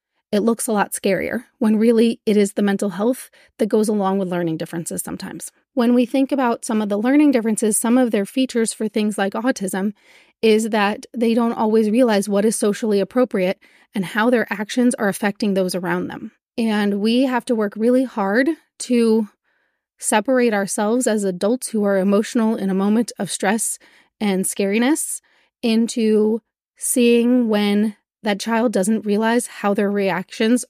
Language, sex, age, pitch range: English, female, 30-49, 200-235 Hz